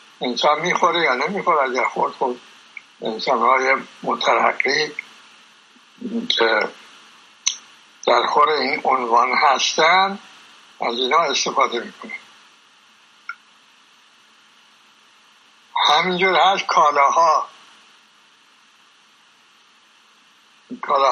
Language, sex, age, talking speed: Persian, male, 60-79, 70 wpm